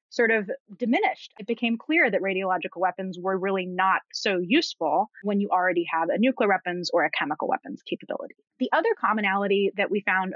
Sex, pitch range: female, 185-250 Hz